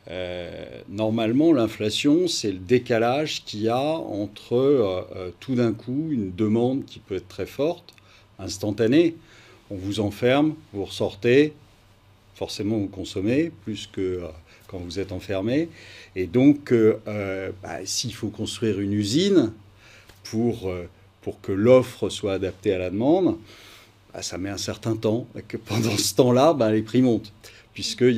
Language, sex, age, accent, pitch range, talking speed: French, male, 50-69, French, 100-120 Hz, 155 wpm